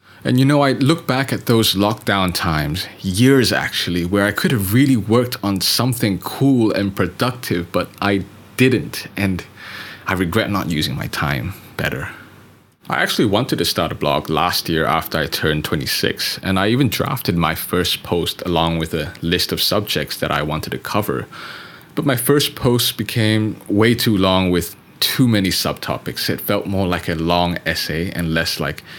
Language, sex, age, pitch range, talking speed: English, male, 20-39, 85-115 Hz, 180 wpm